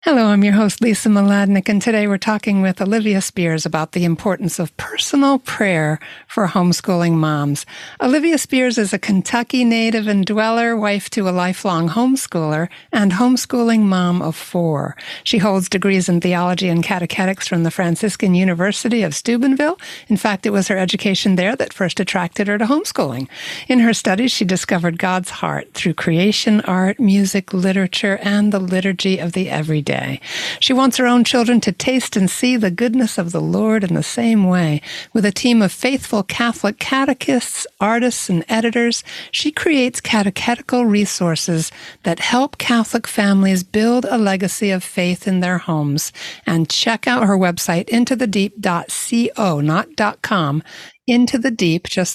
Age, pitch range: 60-79, 180-230 Hz